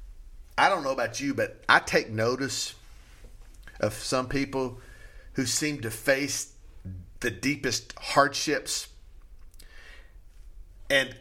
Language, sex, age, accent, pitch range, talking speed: English, male, 40-59, American, 105-140 Hz, 105 wpm